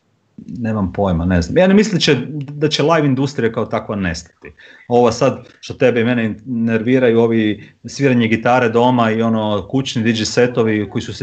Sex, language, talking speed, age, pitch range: male, Croatian, 175 wpm, 30-49, 115-140 Hz